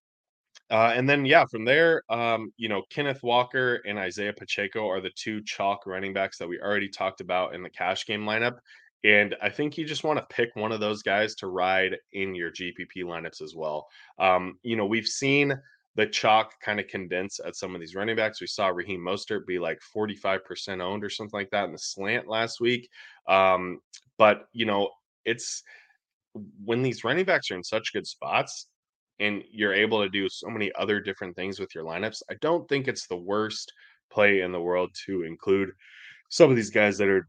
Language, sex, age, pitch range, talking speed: English, male, 20-39, 95-115 Hz, 205 wpm